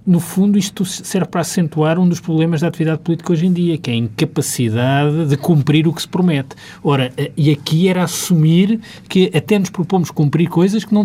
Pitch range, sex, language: 105-155 Hz, male, Portuguese